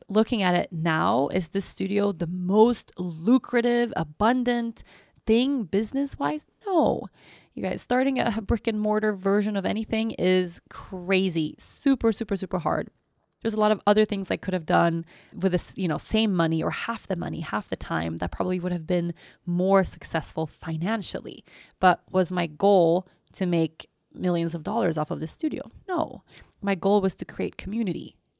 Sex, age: female, 20-39